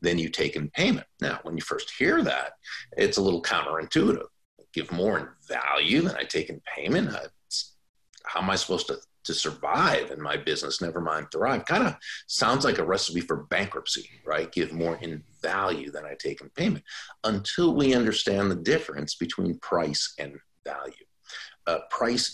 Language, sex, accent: English, male, American